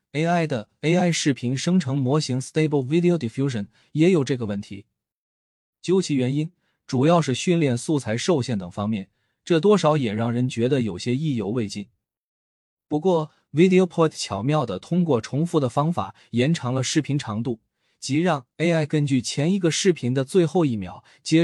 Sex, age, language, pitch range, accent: male, 20-39, Chinese, 115-160 Hz, native